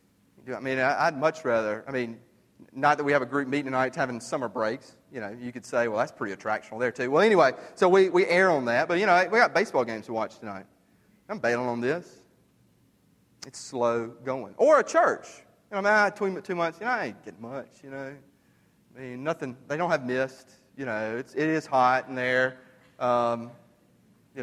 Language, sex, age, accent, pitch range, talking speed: English, male, 30-49, American, 115-145 Hz, 220 wpm